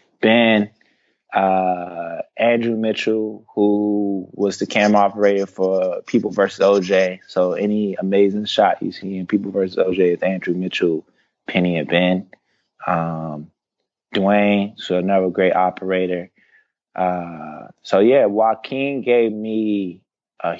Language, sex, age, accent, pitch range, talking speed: English, male, 20-39, American, 90-105 Hz, 120 wpm